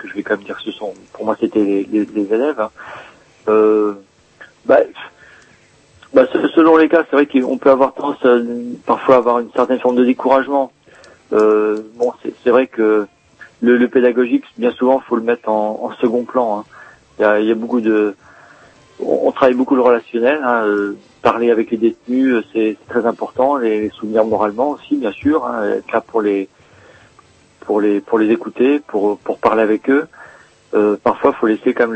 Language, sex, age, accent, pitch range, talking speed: French, male, 40-59, French, 105-125 Hz, 200 wpm